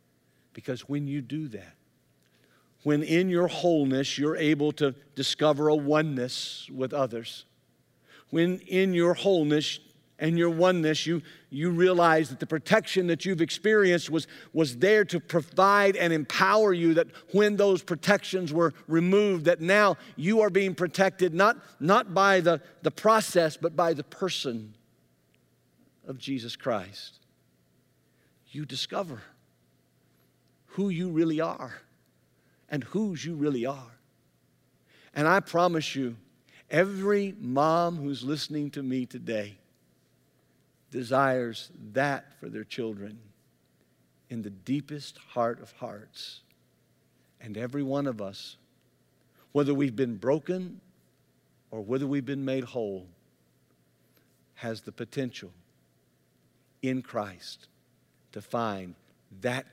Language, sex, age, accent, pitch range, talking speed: English, male, 50-69, American, 120-175 Hz, 125 wpm